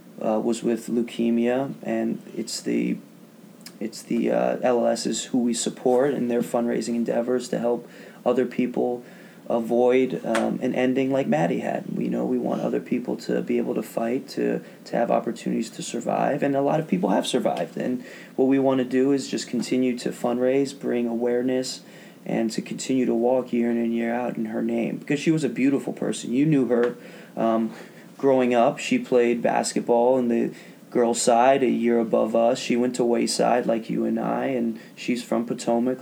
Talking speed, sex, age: 190 wpm, male, 20-39